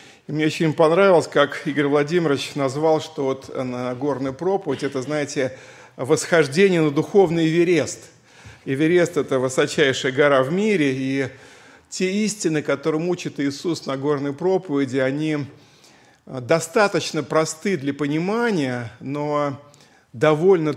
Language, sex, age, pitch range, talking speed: Russian, male, 50-69, 135-170 Hz, 120 wpm